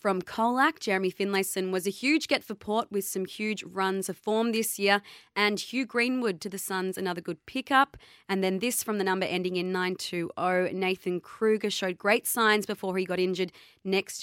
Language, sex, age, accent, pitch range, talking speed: English, female, 20-39, Australian, 180-215 Hz, 195 wpm